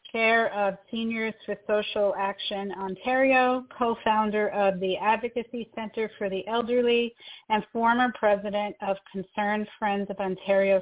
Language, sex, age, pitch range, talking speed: English, female, 40-59, 195-235 Hz, 130 wpm